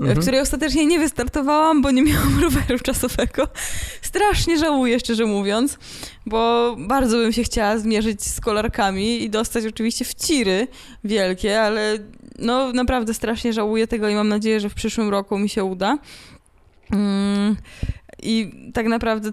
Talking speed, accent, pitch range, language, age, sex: 145 wpm, native, 210-245 Hz, Polish, 20-39, female